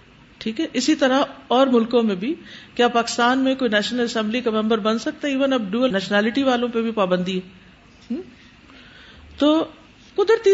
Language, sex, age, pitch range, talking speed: Urdu, female, 50-69, 205-275 Hz, 160 wpm